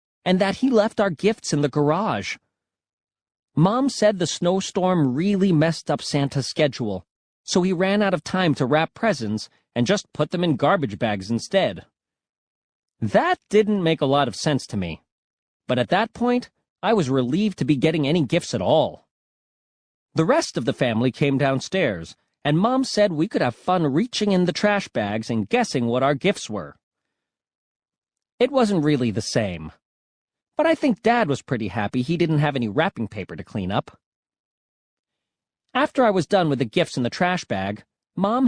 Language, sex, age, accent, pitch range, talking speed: English, male, 40-59, American, 125-200 Hz, 180 wpm